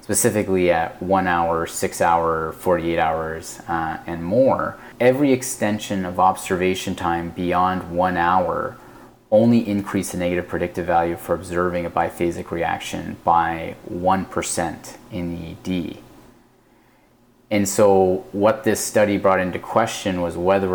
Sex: male